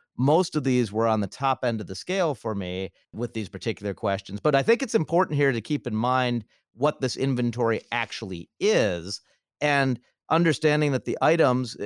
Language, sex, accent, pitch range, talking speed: English, male, American, 110-150 Hz, 185 wpm